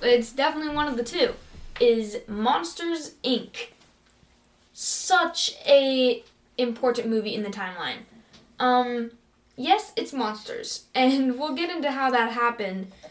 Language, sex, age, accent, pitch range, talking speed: English, female, 10-29, American, 220-260 Hz, 125 wpm